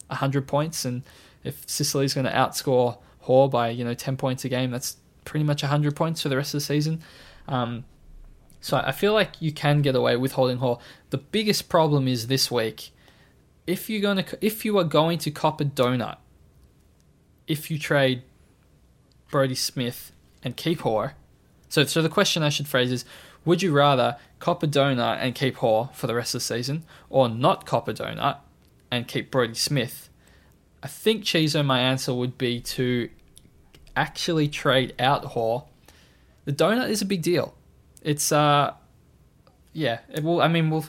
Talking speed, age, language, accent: 180 wpm, 20-39, English, Australian